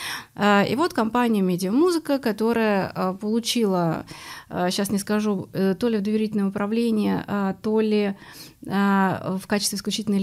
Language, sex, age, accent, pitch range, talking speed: Russian, female, 30-49, native, 195-255 Hz, 110 wpm